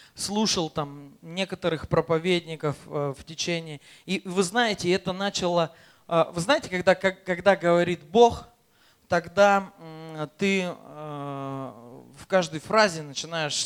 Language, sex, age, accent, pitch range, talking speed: Russian, male, 20-39, native, 150-195 Hz, 115 wpm